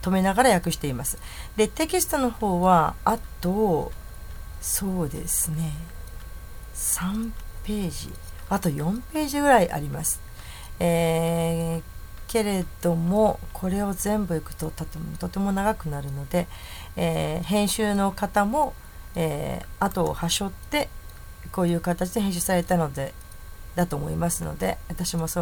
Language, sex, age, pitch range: Japanese, female, 40-59, 150-195 Hz